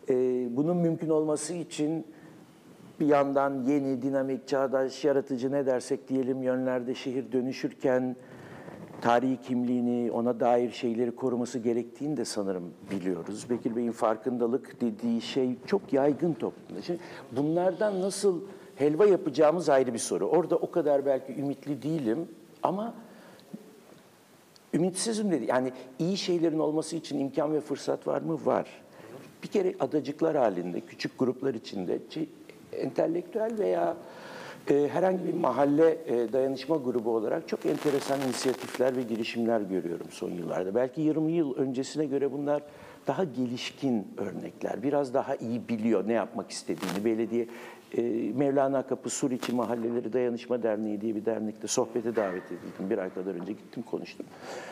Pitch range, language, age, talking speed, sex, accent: 120-160 Hz, Turkish, 60-79, 135 wpm, male, native